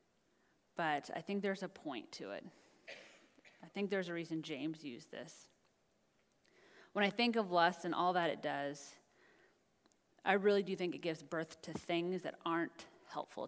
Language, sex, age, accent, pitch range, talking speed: English, female, 30-49, American, 165-215 Hz, 170 wpm